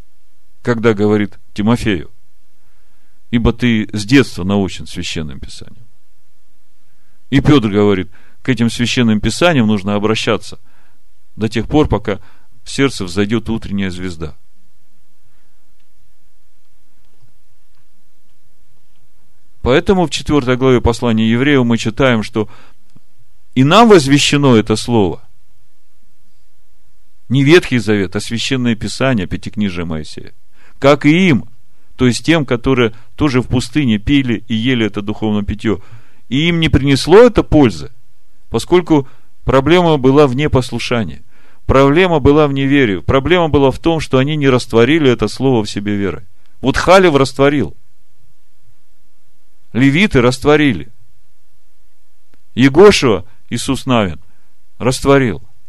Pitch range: 105-135 Hz